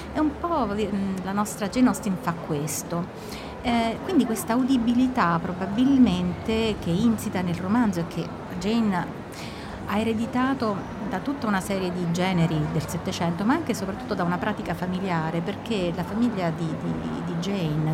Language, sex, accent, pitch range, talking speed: Italian, female, native, 170-215 Hz, 155 wpm